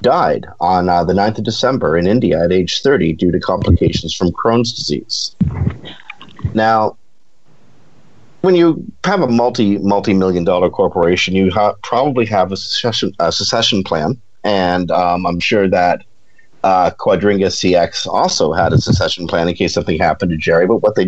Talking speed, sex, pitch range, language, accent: 160 wpm, male, 90-115 Hz, English, American